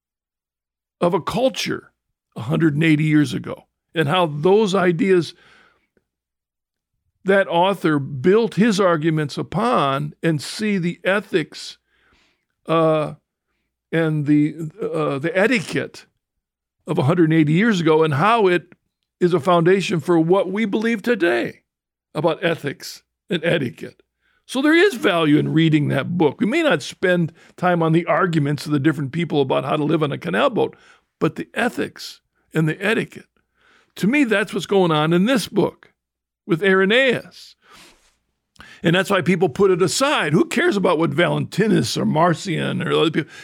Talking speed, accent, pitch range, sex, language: 150 wpm, American, 155-195 Hz, male, English